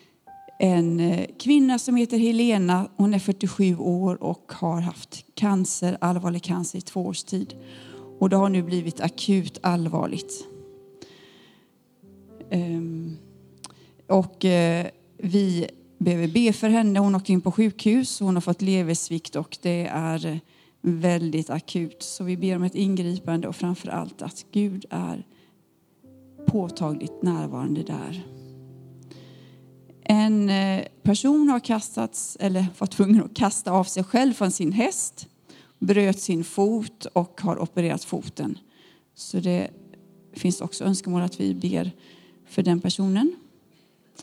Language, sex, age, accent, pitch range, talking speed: Swedish, female, 30-49, native, 175-210 Hz, 125 wpm